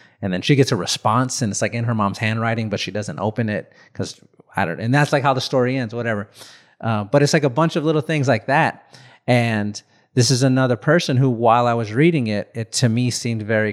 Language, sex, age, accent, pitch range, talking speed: English, male, 30-49, American, 110-135 Hz, 245 wpm